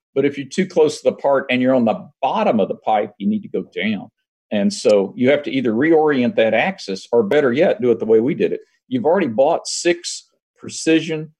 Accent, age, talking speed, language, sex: American, 50-69, 235 wpm, English, male